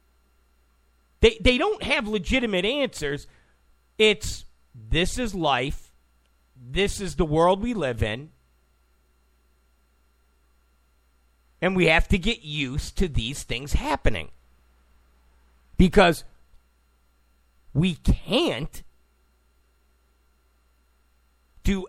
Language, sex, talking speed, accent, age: English, male, 85 wpm, American, 40-59